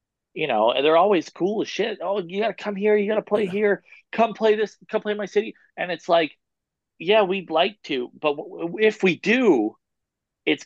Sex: male